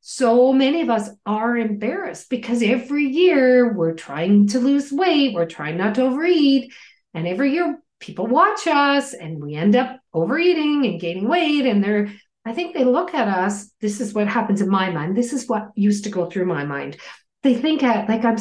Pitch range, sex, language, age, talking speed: 210-305 Hz, female, English, 40-59, 200 wpm